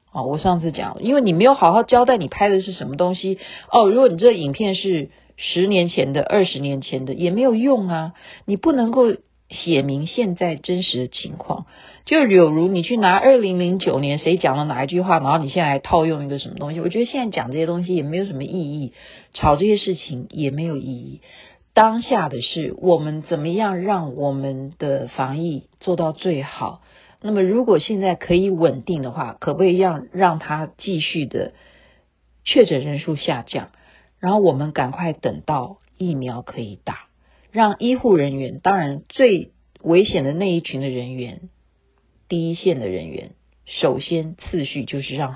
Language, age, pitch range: Chinese, 40-59, 135-185 Hz